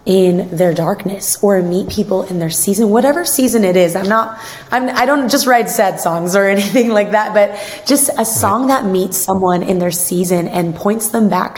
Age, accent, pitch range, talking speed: 20-39, American, 170-200 Hz, 205 wpm